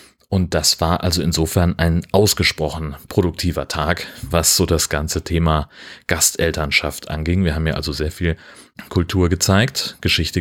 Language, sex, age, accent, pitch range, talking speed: German, male, 30-49, German, 85-105 Hz, 145 wpm